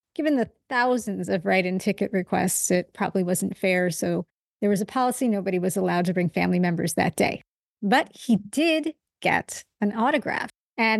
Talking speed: 175 wpm